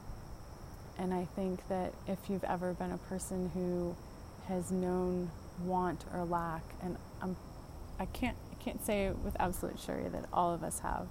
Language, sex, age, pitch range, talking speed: English, female, 30-49, 160-190 Hz, 165 wpm